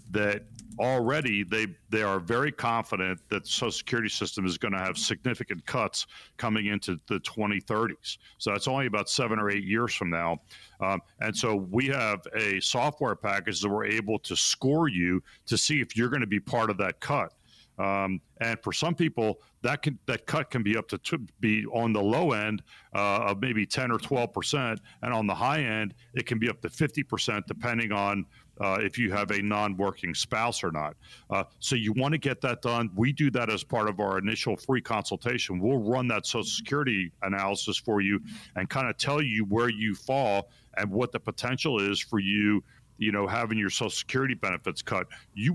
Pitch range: 100-120 Hz